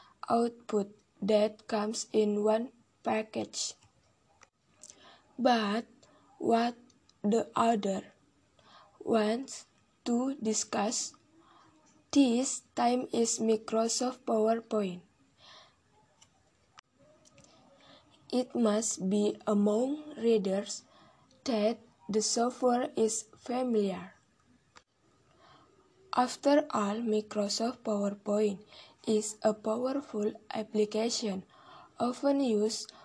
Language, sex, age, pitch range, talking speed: Indonesian, female, 10-29, 215-245 Hz, 70 wpm